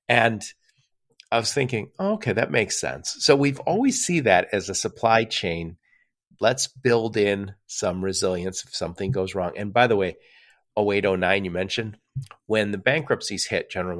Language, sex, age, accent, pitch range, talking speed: English, male, 50-69, American, 95-135 Hz, 165 wpm